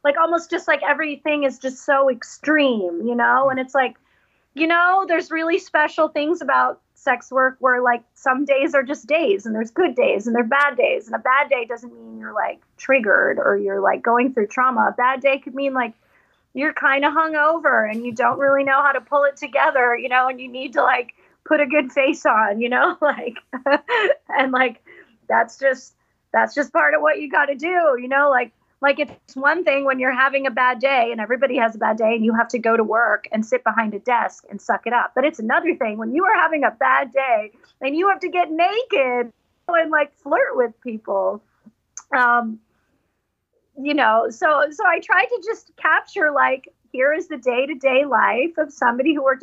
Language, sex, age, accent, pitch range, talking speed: English, female, 30-49, American, 245-315 Hz, 215 wpm